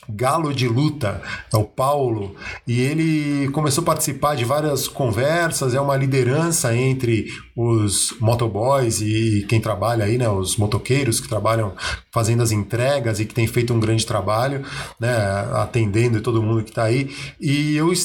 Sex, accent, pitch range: male, Brazilian, 120-155 Hz